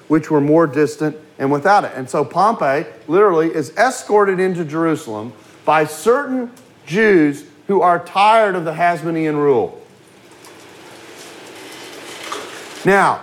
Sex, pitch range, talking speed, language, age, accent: male, 155-210 Hz, 120 wpm, English, 40-59, American